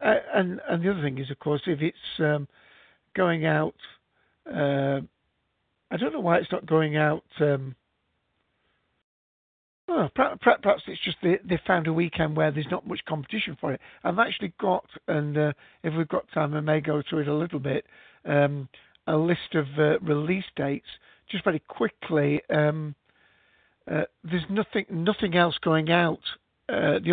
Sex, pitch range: male, 140-170 Hz